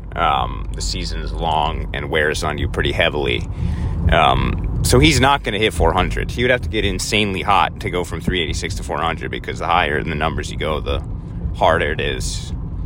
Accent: American